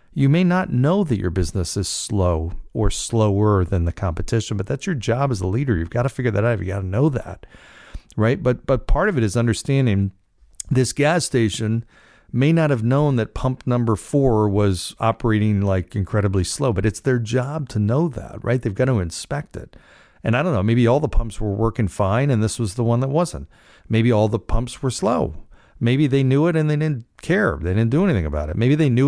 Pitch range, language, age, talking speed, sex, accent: 105-135 Hz, English, 50-69, 225 wpm, male, American